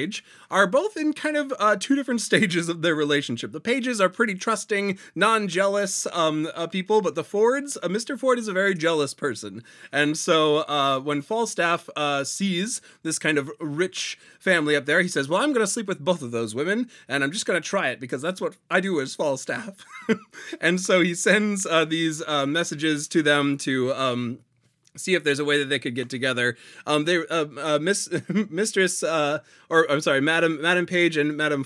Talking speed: 205 wpm